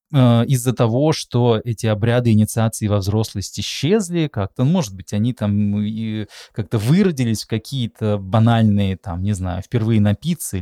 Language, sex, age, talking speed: Russian, male, 20-39, 135 wpm